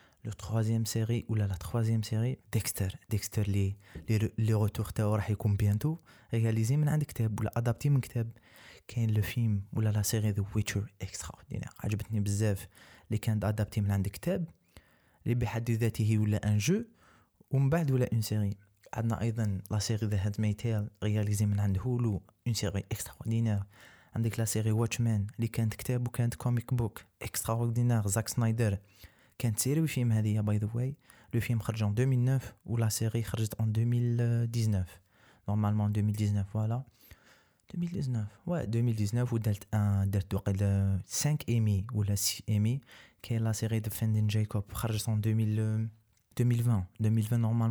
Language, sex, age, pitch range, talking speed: Arabic, male, 20-39, 105-120 Hz, 150 wpm